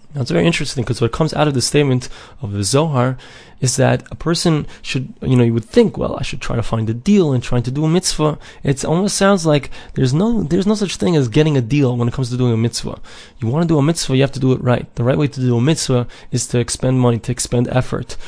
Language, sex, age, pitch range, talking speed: English, male, 20-39, 120-150 Hz, 275 wpm